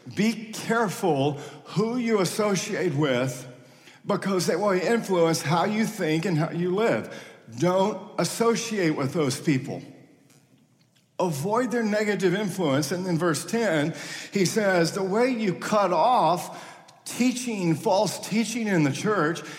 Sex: male